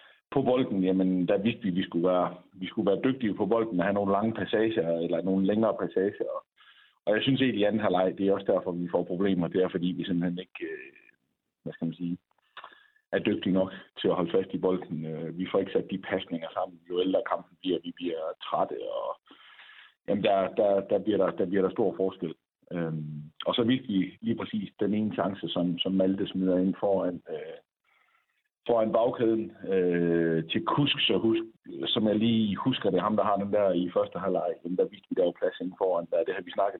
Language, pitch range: Danish, 90-125 Hz